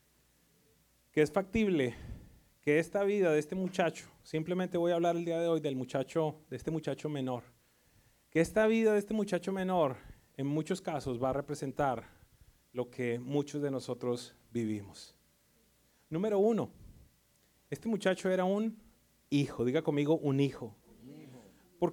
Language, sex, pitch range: English, male, 150-210 Hz